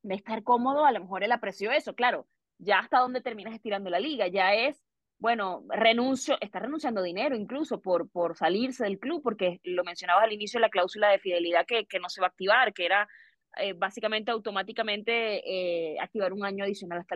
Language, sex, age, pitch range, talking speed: Spanish, female, 20-39, 205-260 Hz, 200 wpm